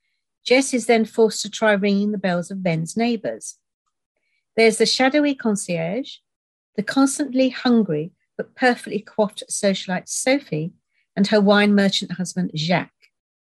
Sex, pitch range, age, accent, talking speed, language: female, 180-235 Hz, 50-69, British, 135 wpm, English